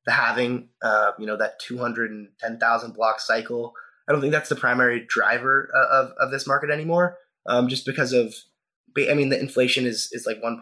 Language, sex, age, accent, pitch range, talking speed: English, male, 20-39, American, 115-140 Hz, 180 wpm